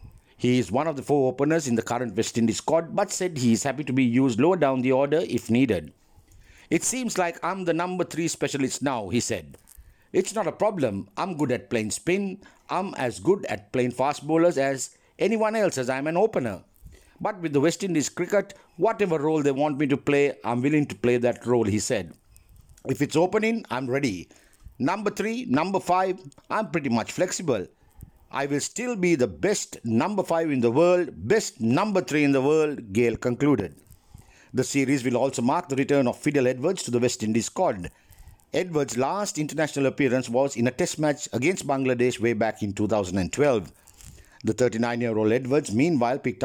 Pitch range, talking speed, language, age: 120-165 Hz, 190 wpm, English, 60-79